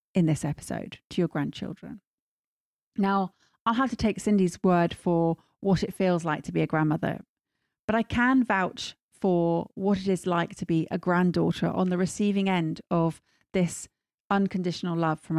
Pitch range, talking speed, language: 170-215 Hz, 170 wpm, English